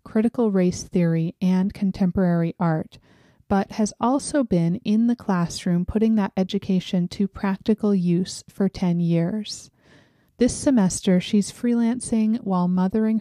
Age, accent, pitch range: 30-49, American, 180-220 Hz